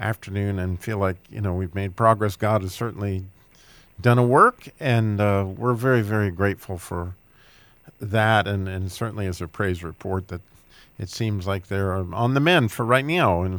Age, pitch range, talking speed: 50-69, 100-130 Hz, 185 wpm